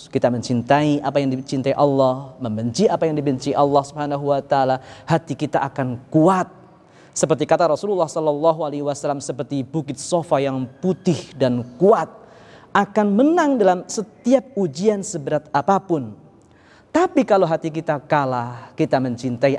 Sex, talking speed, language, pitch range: male, 125 wpm, Indonesian, 125-165 Hz